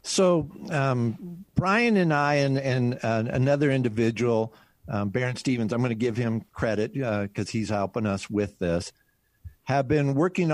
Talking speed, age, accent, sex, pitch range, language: 165 wpm, 50-69, American, male, 110-145 Hz, English